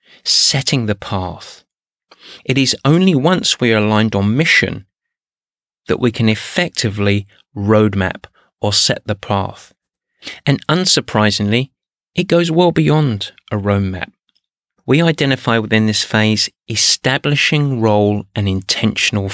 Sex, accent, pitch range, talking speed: male, British, 105-135 Hz, 120 wpm